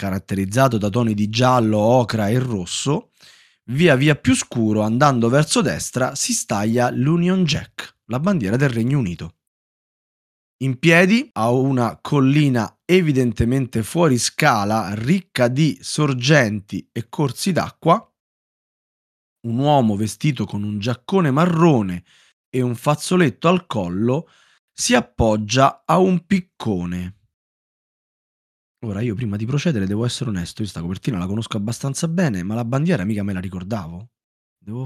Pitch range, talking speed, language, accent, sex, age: 105-165 Hz, 135 wpm, Italian, native, male, 20-39